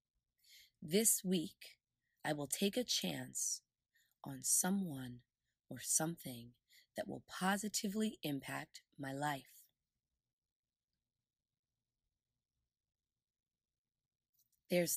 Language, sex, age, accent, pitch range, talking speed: English, female, 20-39, American, 140-175 Hz, 70 wpm